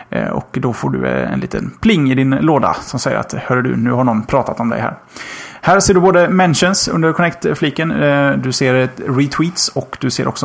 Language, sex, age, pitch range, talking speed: Swedish, male, 30-49, 125-155 Hz, 205 wpm